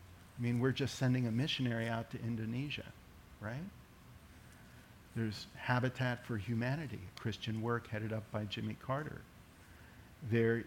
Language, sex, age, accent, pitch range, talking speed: English, male, 50-69, American, 110-130 Hz, 135 wpm